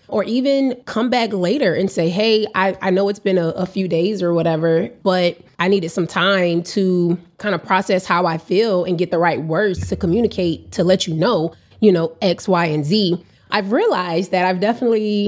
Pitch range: 175-215 Hz